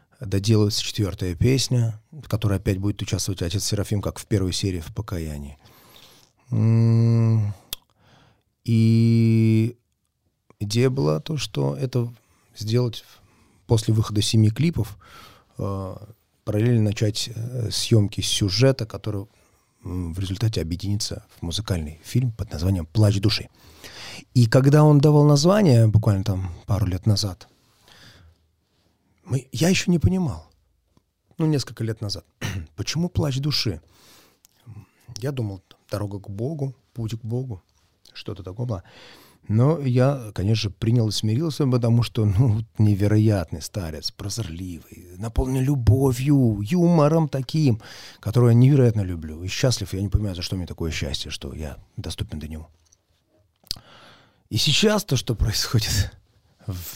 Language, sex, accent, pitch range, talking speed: Russian, male, native, 95-120 Hz, 125 wpm